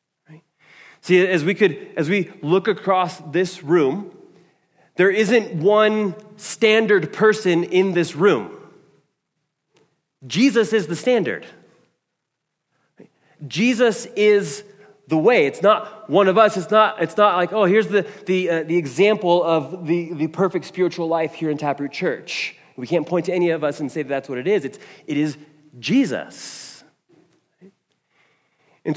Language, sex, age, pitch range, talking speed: English, male, 30-49, 130-190 Hz, 150 wpm